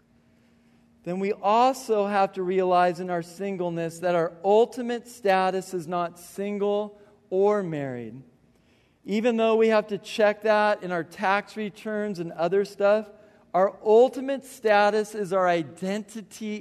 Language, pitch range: English, 180-215 Hz